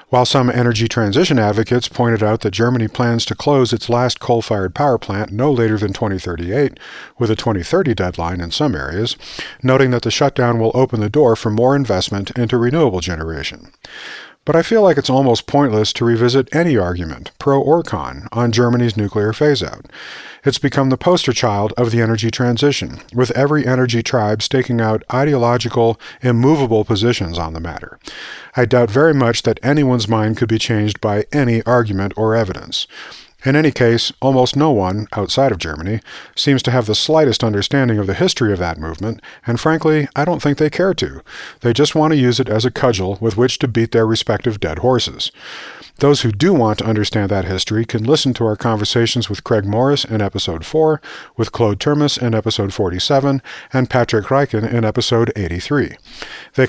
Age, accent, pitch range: 40-59, American, 110-135 Hz